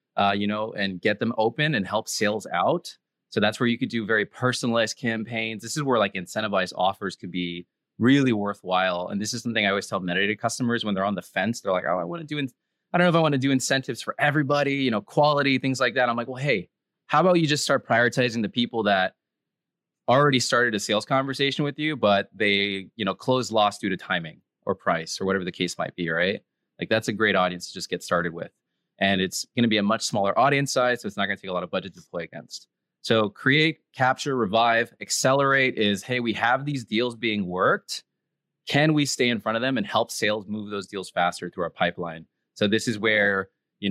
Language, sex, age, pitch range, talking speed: English, male, 20-39, 100-135 Hz, 240 wpm